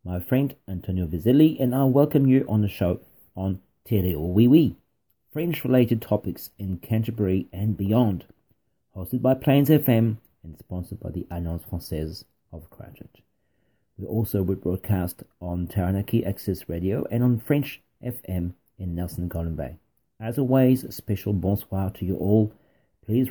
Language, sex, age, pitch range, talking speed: French, male, 40-59, 90-125 Hz, 145 wpm